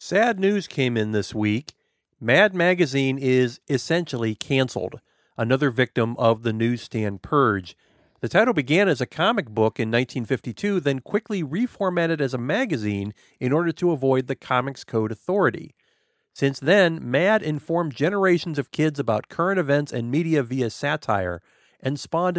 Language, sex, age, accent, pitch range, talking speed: English, male, 50-69, American, 120-165 Hz, 150 wpm